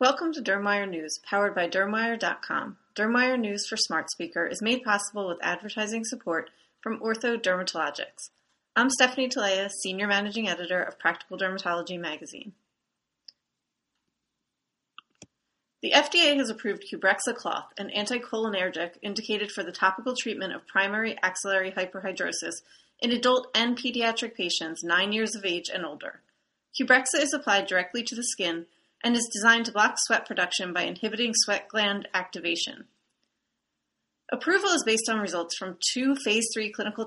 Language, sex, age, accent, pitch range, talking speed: English, female, 30-49, American, 190-235 Hz, 140 wpm